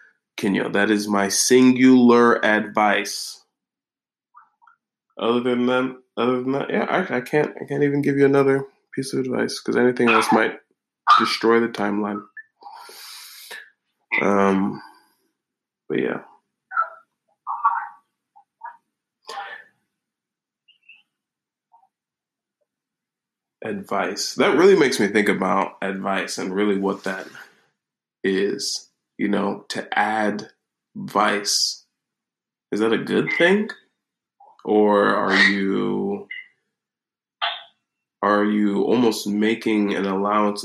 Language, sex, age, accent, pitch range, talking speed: English, male, 20-39, American, 100-140 Hz, 100 wpm